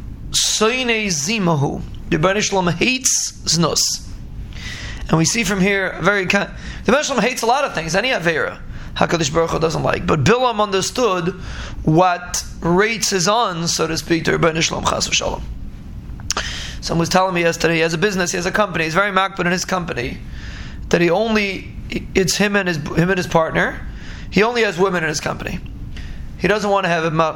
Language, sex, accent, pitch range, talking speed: English, male, American, 165-195 Hz, 180 wpm